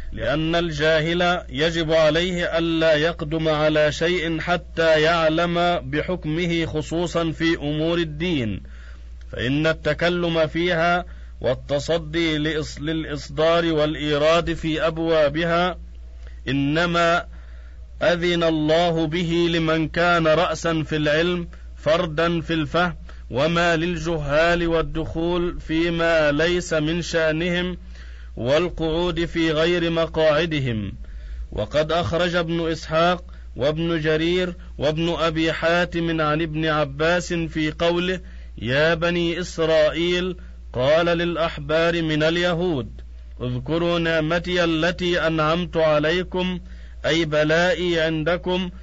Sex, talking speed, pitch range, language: male, 90 wpm, 150-170 Hz, Arabic